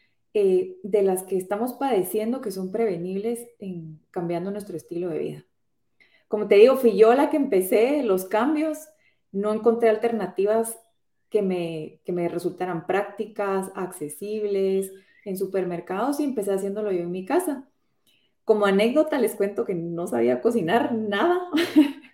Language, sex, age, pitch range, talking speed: Spanish, female, 20-39, 185-230 Hz, 145 wpm